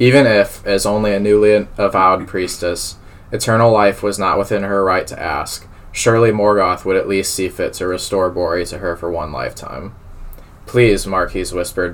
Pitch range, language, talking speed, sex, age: 90-105 Hz, English, 175 wpm, male, 20-39